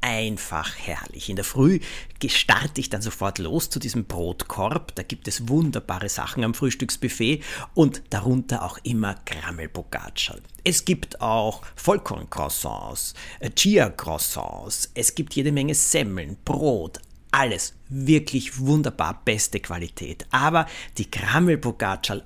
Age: 50-69